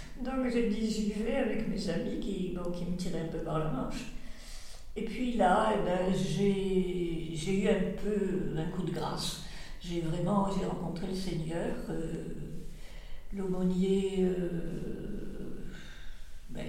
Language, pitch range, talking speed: French, 165-200 Hz, 150 wpm